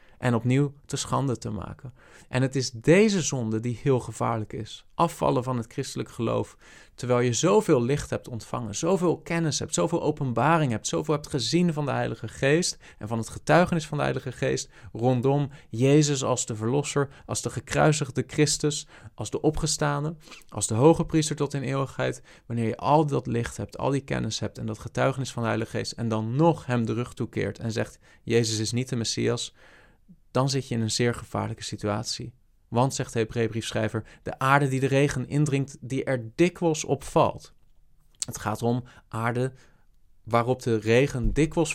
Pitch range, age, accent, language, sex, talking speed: 110-145 Hz, 40-59, Dutch, Dutch, male, 185 wpm